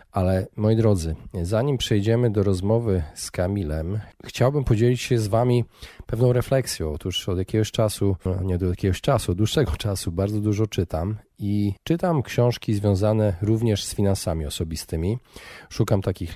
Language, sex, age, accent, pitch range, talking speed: Polish, male, 40-59, native, 90-115 Hz, 145 wpm